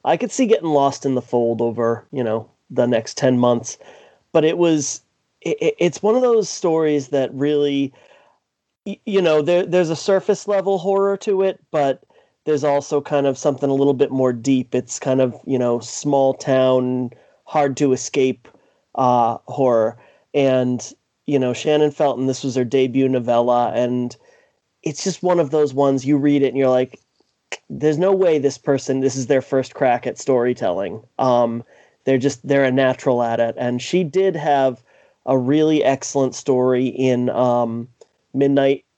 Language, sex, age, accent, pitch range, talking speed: English, male, 30-49, American, 125-145 Hz, 175 wpm